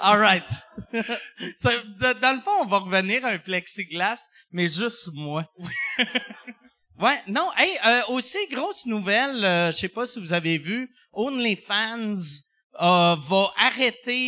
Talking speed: 140 wpm